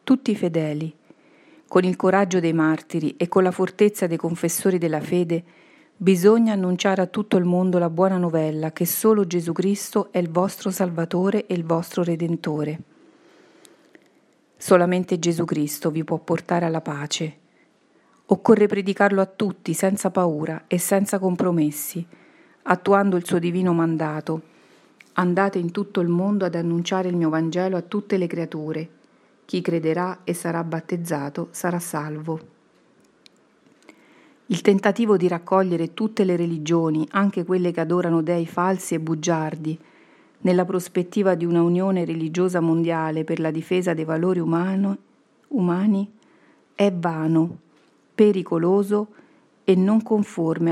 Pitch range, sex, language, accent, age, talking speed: 165-195 Hz, female, Italian, native, 40-59, 135 wpm